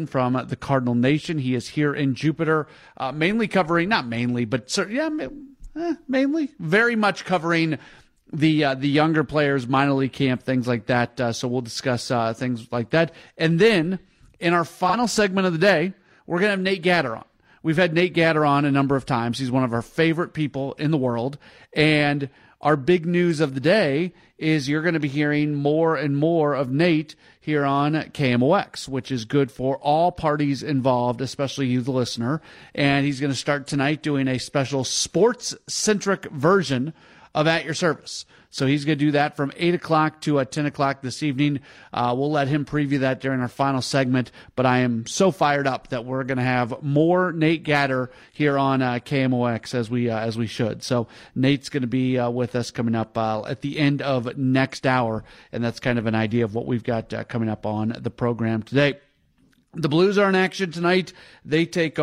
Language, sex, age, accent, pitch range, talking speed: English, male, 40-59, American, 125-160 Hz, 205 wpm